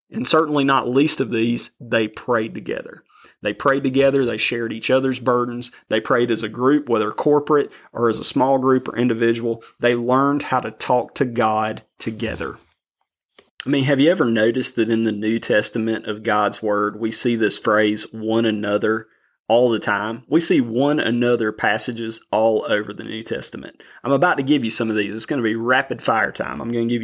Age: 30-49